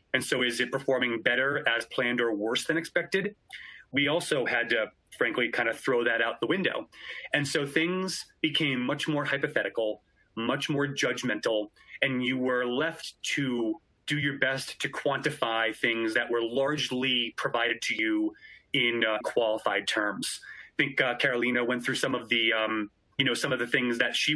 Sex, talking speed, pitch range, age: male, 180 wpm, 115-145 Hz, 30-49